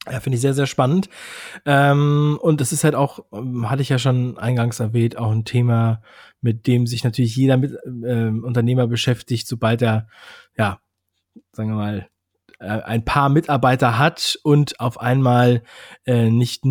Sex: male